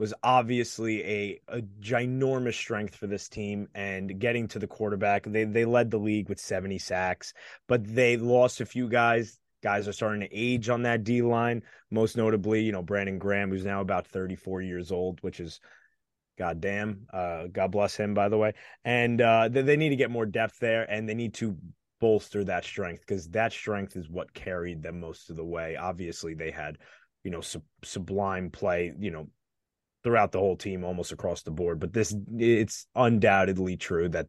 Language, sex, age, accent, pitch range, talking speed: English, male, 20-39, American, 95-115 Hz, 190 wpm